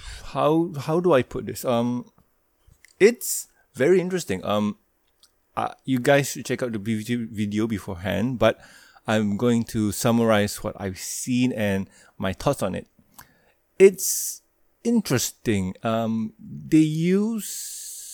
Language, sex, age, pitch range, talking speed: English, male, 20-39, 105-125 Hz, 125 wpm